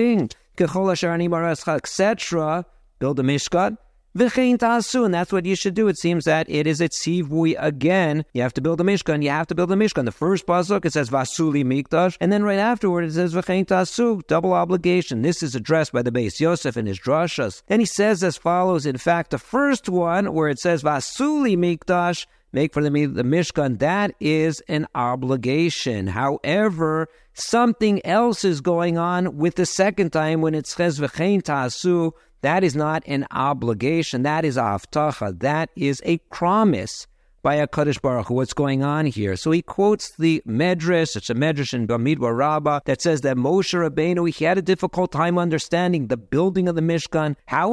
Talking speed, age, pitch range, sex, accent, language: 175 wpm, 50-69, 145-185 Hz, male, American, English